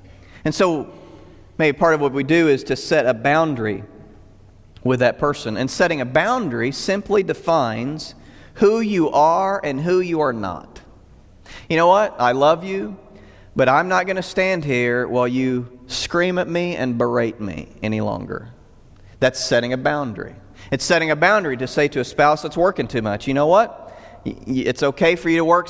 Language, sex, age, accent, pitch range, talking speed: English, male, 40-59, American, 125-170 Hz, 185 wpm